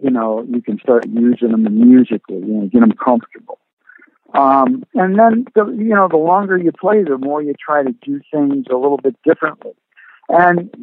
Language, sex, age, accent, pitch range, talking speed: English, male, 60-79, American, 130-195 Hz, 195 wpm